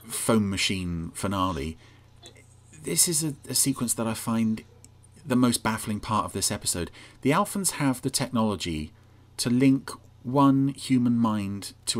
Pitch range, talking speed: 105-125 Hz, 145 wpm